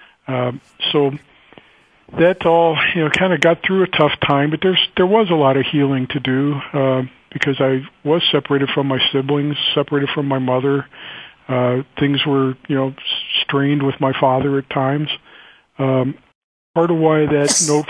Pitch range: 135-160 Hz